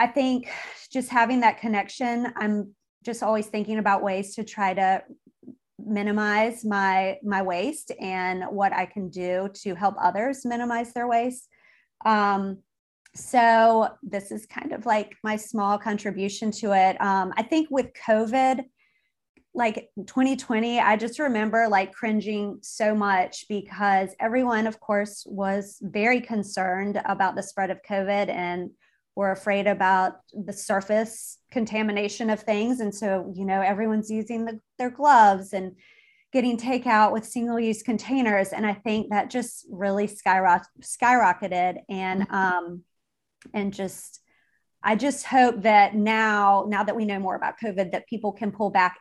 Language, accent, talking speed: English, American, 150 wpm